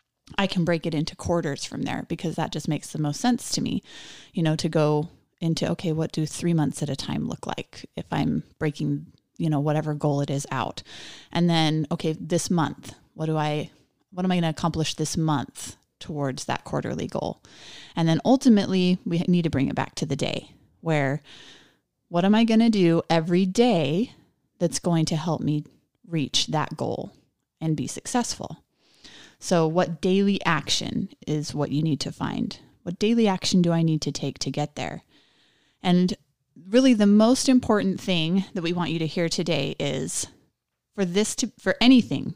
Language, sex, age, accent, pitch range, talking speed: English, female, 30-49, American, 150-190 Hz, 190 wpm